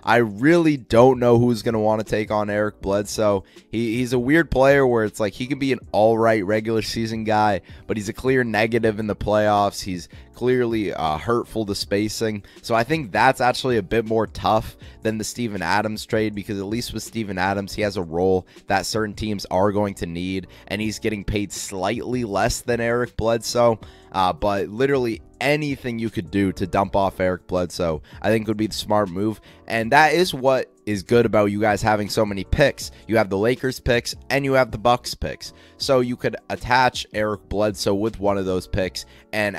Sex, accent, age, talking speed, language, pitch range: male, American, 20-39, 210 wpm, English, 100-115 Hz